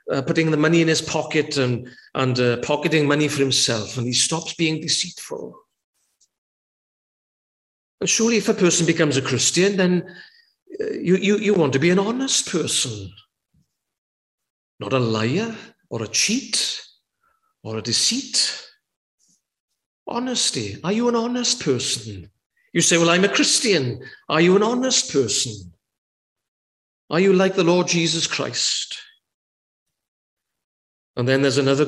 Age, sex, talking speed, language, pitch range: 50-69, male, 140 wpm, English, 125-195 Hz